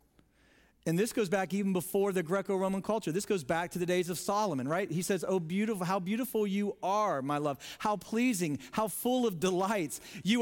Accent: American